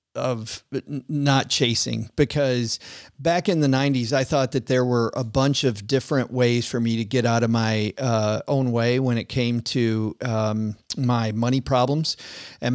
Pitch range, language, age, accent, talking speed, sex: 120-145 Hz, English, 40-59, American, 175 wpm, male